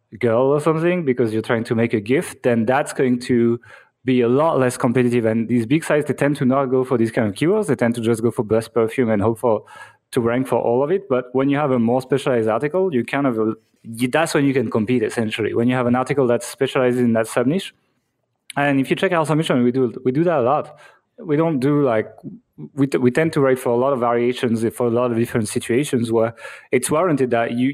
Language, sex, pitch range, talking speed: English, male, 120-140 Hz, 255 wpm